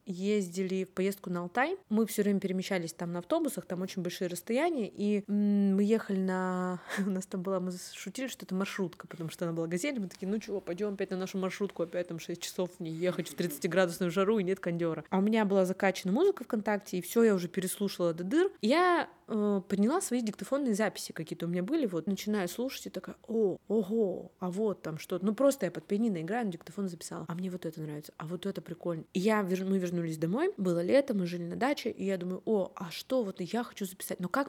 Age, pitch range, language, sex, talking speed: 20-39, 180-215 Hz, Russian, female, 225 wpm